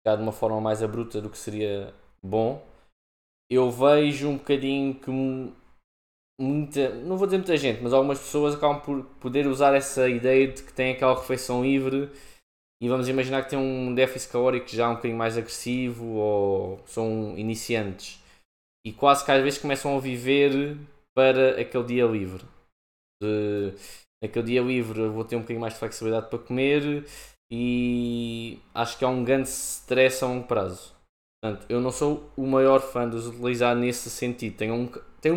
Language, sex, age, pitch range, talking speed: Portuguese, male, 20-39, 110-135 Hz, 165 wpm